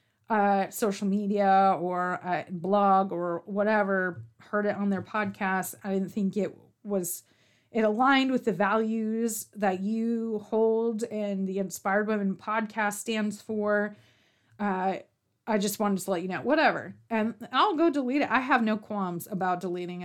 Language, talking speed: English, 160 wpm